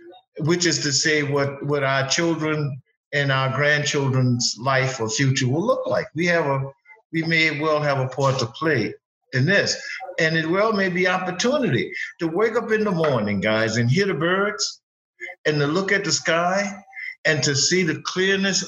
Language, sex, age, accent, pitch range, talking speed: English, male, 50-69, American, 145-195 Hz, 180 wpm